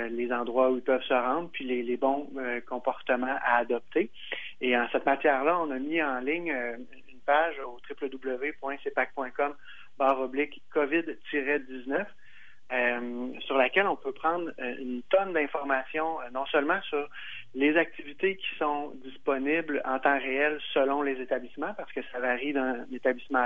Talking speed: 150 wpm